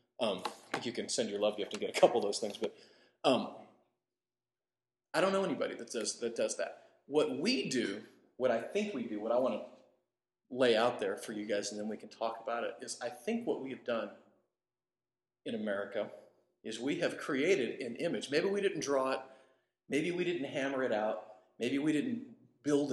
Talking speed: 215 wpm